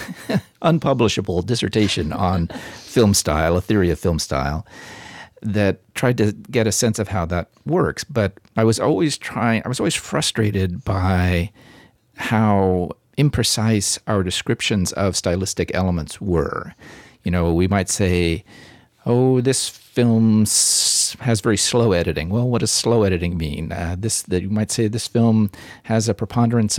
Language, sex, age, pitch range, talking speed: English, male, 50-69, 90-115 Hz, 150 wpm